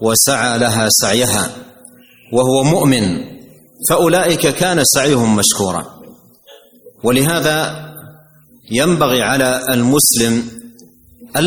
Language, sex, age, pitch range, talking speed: Indonesian, male, 40-59, 120-150 Hz, 75 wpm